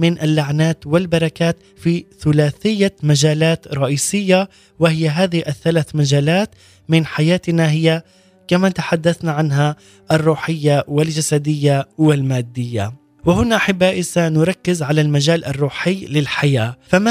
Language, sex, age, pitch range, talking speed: Arabic, male, 20-39, 150-180 Hz, 100 wpm